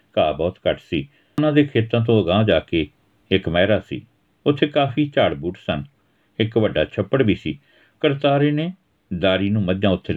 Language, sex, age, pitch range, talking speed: Punjabi, male, 60-79, 100-135 Hz, 170 wpm